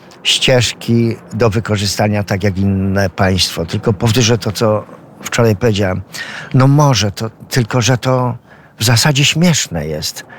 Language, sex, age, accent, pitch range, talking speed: Polish, male, 50-69, native, 100-125 Hz, 125 wpm